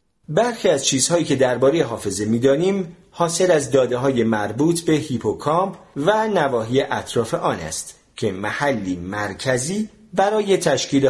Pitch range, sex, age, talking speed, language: 110-175 Hz, male, 40-59, 130 wpm, Persian